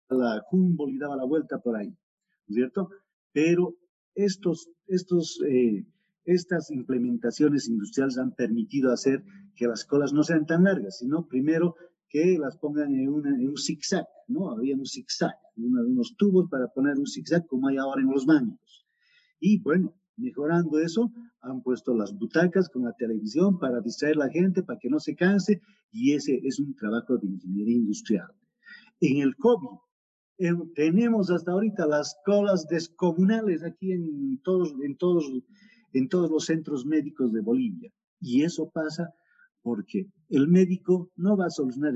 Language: Spanish